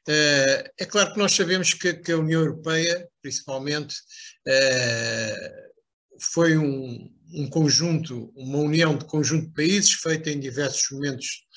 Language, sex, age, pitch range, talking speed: Portuguese, male, 60-79, 140-180 Hz, 120 wpm